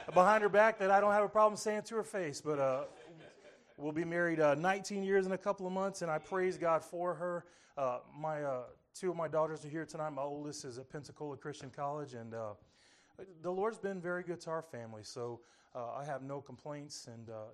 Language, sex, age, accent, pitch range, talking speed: English, male, 30-49, American, 140-190 Hz, 230 wpm